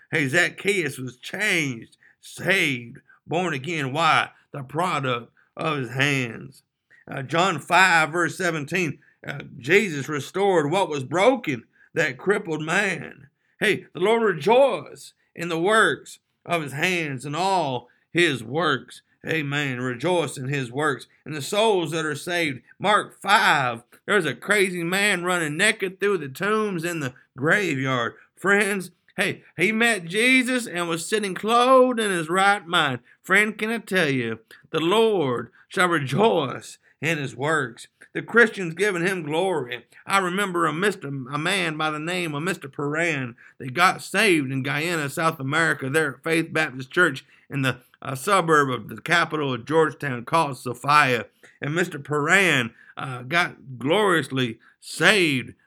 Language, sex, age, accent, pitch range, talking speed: English, male, 50-69, American, 135-185 Hz, 150 wpm